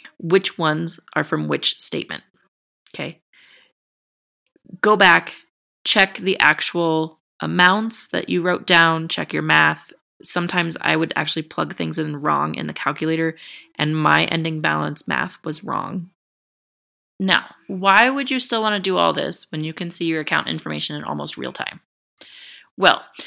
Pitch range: 160-220 Hz